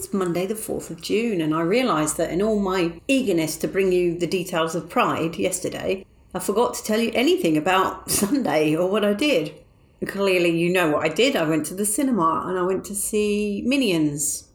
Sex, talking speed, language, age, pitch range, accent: female, 210 wpm, English, 40-59, 165-210 Hz, British